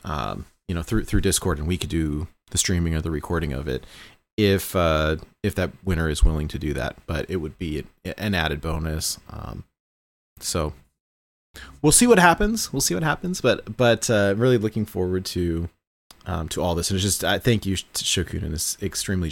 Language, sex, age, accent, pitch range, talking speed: English, male, 30-49, American, 85-120 Hz, 200 wpm